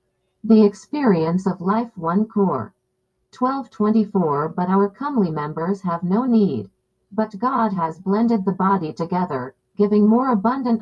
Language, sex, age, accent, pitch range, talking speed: Filipino, female, 50-69, American, 170-225 Hz, 135 wpm